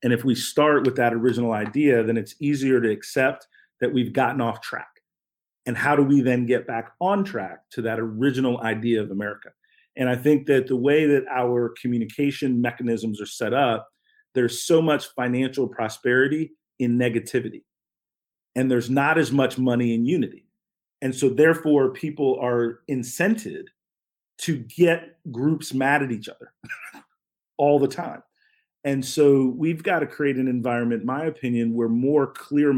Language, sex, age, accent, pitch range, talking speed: English, male, 40-59, American, 120-150 Hz, 165 wpm